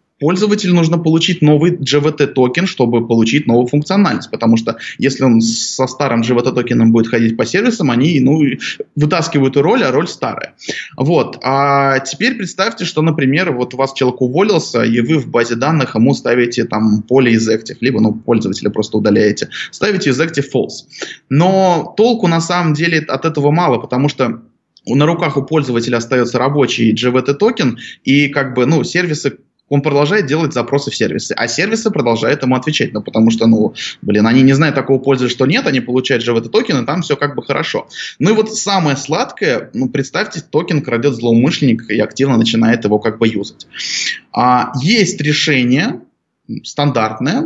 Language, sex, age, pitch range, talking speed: Russian, male, 20-39, 120-165 Hz, 170 wpm